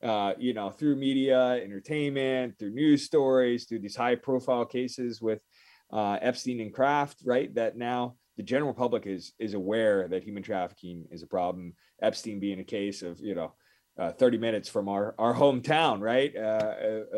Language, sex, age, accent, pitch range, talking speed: English, male, 30-49, American, 110-135 Hz, 175 wpm